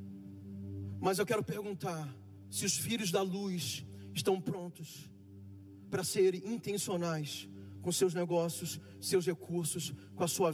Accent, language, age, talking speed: Brazilian, Portuguese, 40-59, 125 wpm